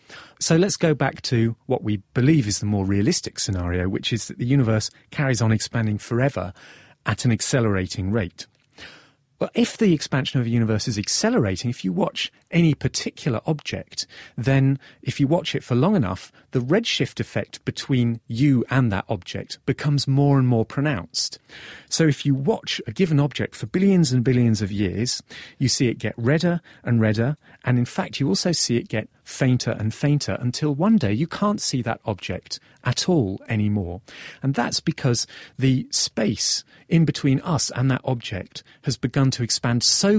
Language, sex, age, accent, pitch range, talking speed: English, male, 40-59, British, 110-145 Hz, 180 wpm